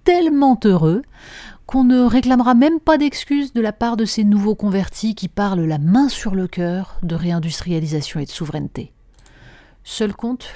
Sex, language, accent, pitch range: female, French, French, 165-225 Hz